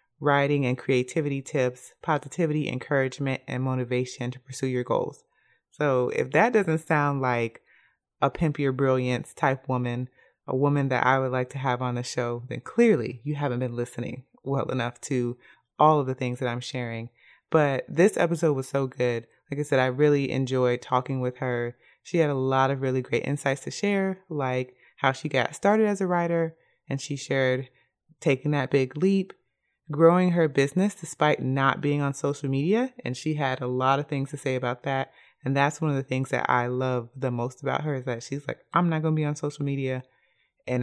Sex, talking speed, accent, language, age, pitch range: female, 200 wpm, American, English, 20-39, 130-155 Hz